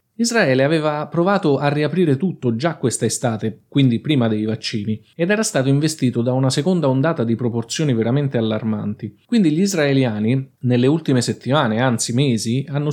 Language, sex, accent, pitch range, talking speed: Italian, male, native, 115-150 Hz, 160 wpm